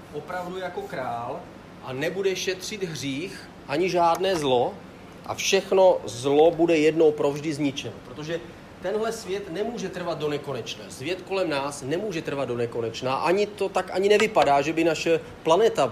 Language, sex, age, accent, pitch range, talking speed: Czech, male, 40-59, native, 140-180 Hz, 150 wpm